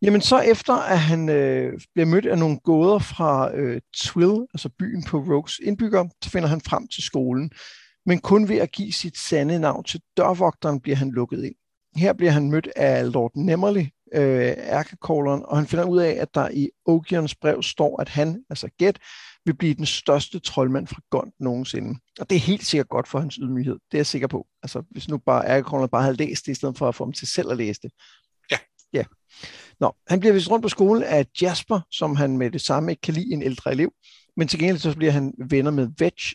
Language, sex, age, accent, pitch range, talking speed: Danish, male, 60-79, native, 135-175 Hz, 220 wpm